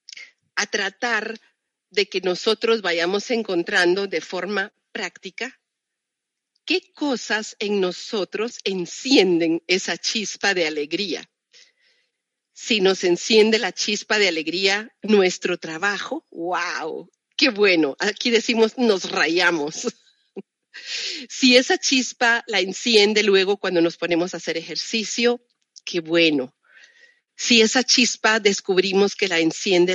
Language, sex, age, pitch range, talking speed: Spanish, female, 40-59, 180-240 Hz, 110 wpm